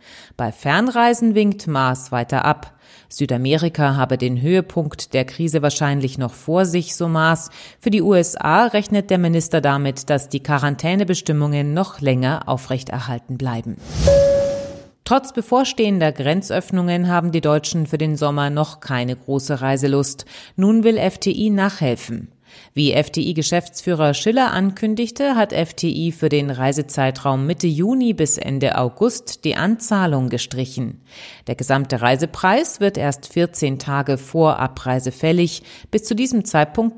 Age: 30-49